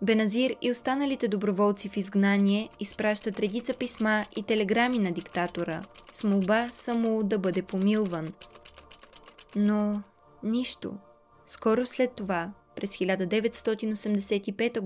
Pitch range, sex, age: 190-225 Hz, female, 20-39